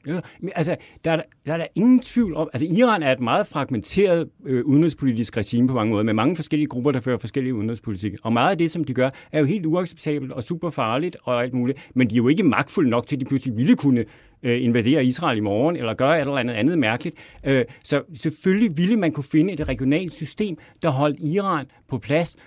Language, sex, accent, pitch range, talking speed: Danish, male, native, 120-155 Hz, 230 wpm